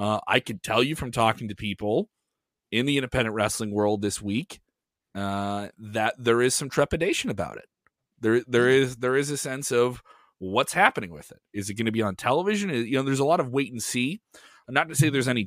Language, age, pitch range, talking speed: English, 30-49, 110-140 Hz, 225 wpm